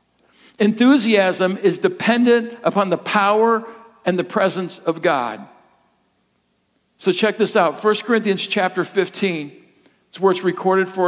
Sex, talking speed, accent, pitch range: male, 130 wpm, American, 190-240 Hz